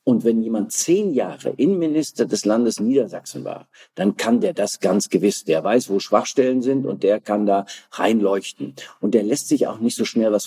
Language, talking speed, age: German, 200 wpm, 50-69